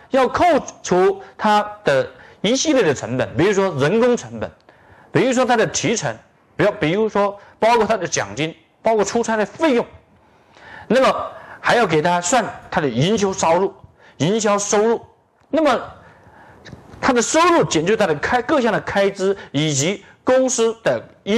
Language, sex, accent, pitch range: Chinese, male, native, 165-240 Hz